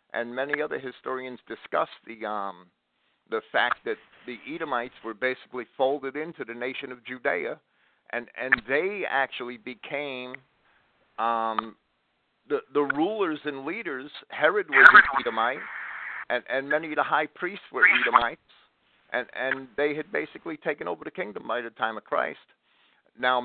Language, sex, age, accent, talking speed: English, male, 50-69, American, 150 wpm